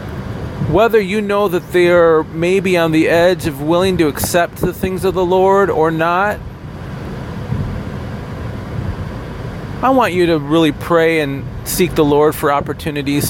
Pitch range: 135-185 Hz